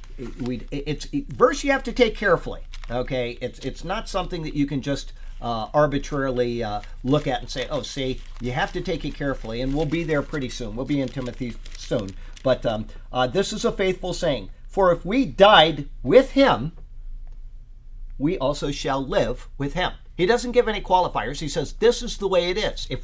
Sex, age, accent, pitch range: male, 50-69, American, 125-180 Hz